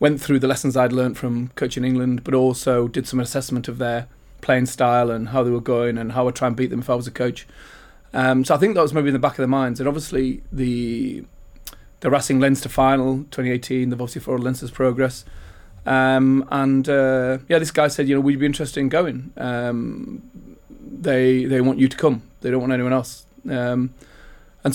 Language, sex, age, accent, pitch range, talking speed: English, male, 30-49, British, 125-135 Hz, 220 wpm